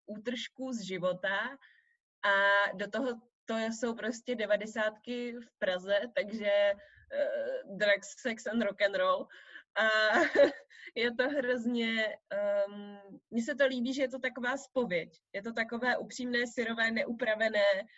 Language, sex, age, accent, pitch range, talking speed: Czech, female, 20-39, native, 195-245 Hz, 135 wpm